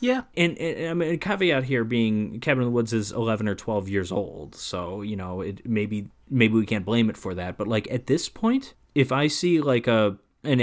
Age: 30-49